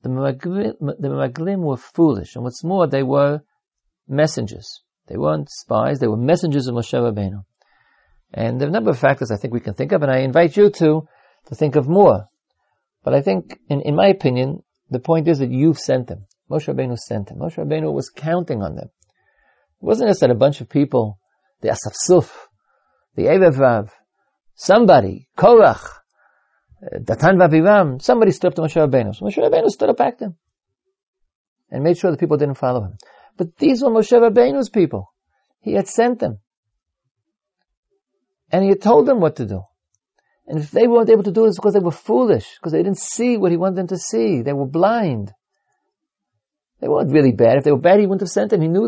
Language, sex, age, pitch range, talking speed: English, male, 50-69, 120-195 Hz, 195 wpm